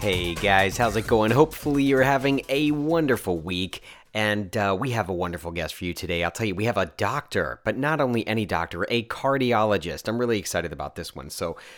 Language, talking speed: English, 215 wpm